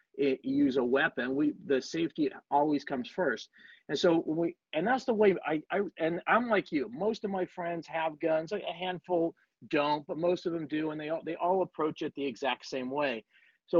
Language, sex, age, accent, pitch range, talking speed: English, male, 50-69, American, 140-180 Hz, 215 wpm